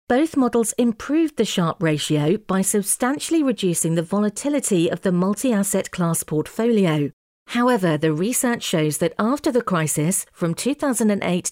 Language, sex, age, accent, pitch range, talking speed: English, female, 40-59, British, 170-235 Hz, 135 wpm